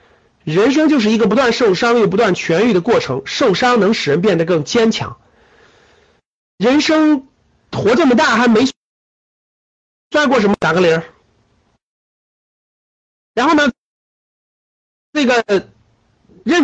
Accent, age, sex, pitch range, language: native, 50-69, male, 190-280 Hz, Chinese